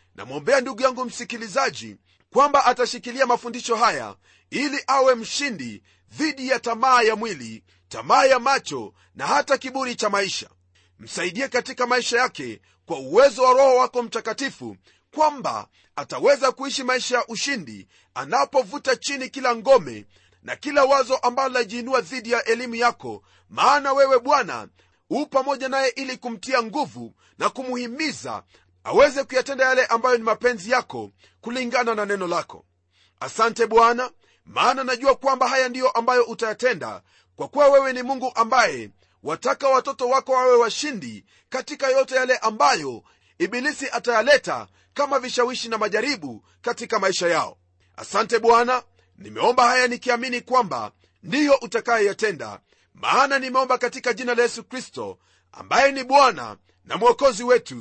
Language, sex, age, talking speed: Swahili, male, 40-59, 135 wpm